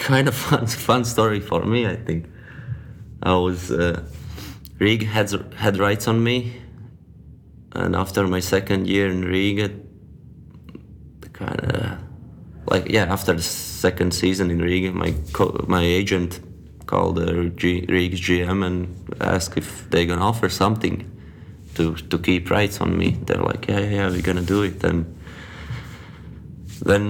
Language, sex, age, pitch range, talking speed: Finnish, male, 20-39, 90-105 Hz, 145 wpm